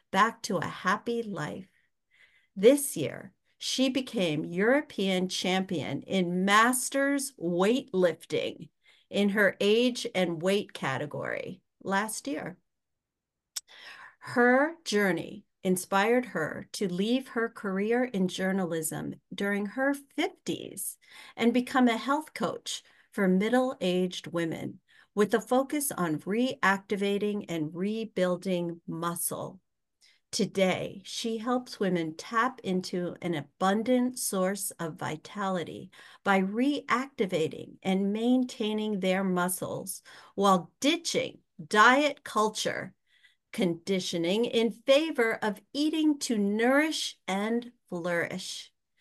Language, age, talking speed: English, 50-69, 100 wpm